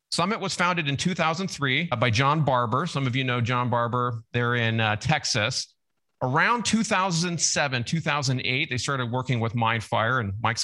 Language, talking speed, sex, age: English, 160 wpm, male, 40-59